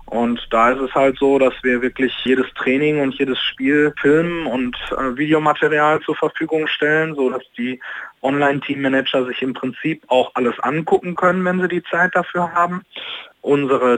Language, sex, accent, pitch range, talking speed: German, male, German, 130-155 Hz, 165 wpm